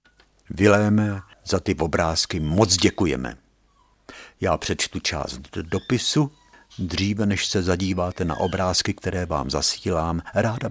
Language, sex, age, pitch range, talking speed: Czech, male, 60-79, 80-110 Hz, 110 wpm